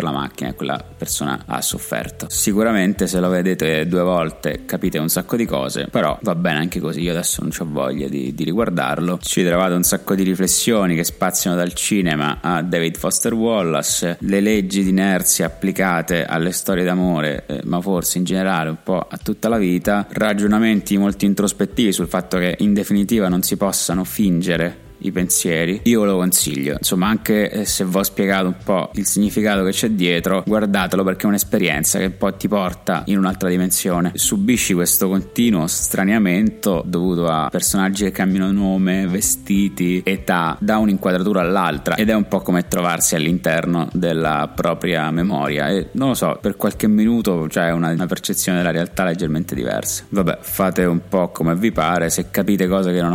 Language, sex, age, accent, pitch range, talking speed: Italian, male, 20-39, native, 85-100 Hz, 180 wpm